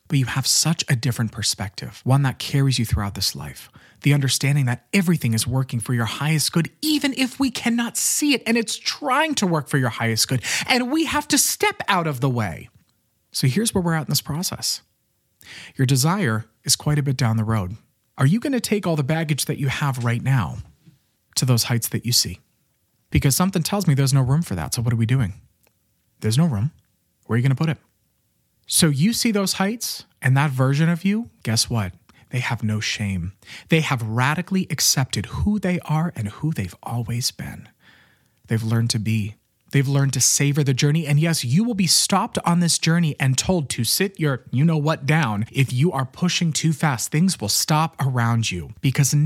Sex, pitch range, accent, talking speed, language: male, 120-175 Hz, American, 210 wpm, English